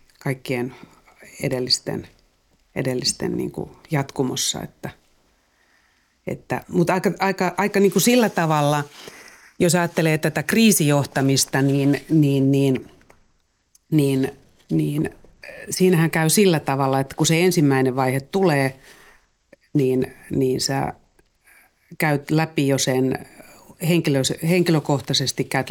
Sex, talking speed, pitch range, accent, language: female, 100 wpm, 130-165 Hz, native, Finnish